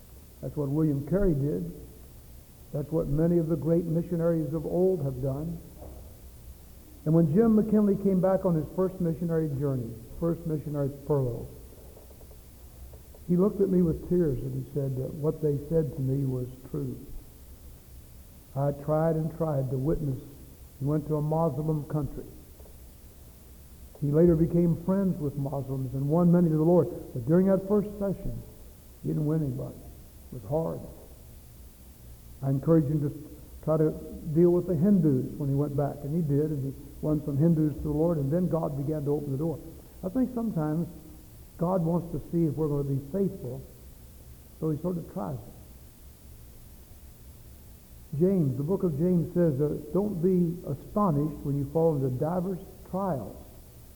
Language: English